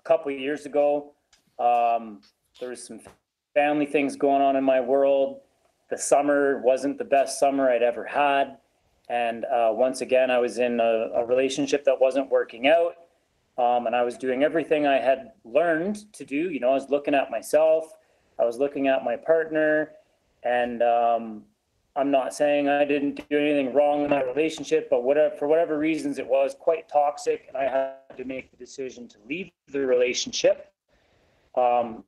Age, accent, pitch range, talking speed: 30-49, American, 130-165 Hz, 180 wpm